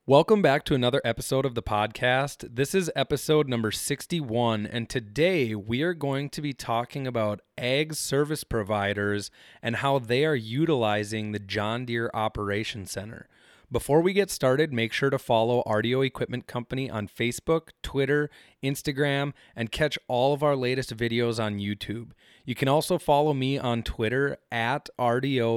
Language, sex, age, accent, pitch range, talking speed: English, male, 30-49, American, 115-145 Hz, 160 wpm